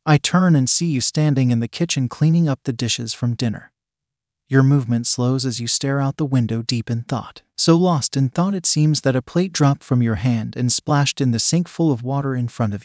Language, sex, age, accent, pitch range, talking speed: English, male, 30-49, American, 120-155 Hz, 240 wpm